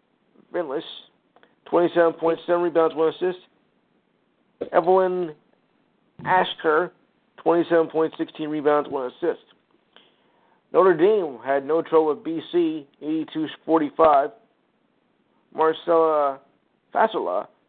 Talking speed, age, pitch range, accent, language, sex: 70 wpm, 50-69, 145-180 Hz, American, English, male